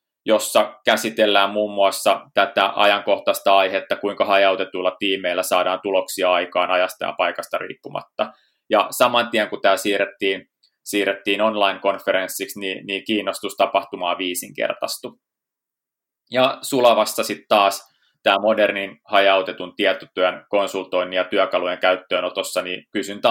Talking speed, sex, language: 110 wpm, male, Finnish